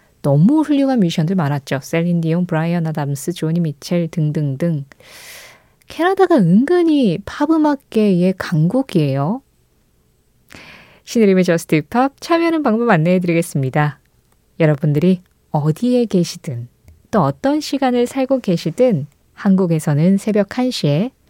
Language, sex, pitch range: Korean, female, 160-250 Hz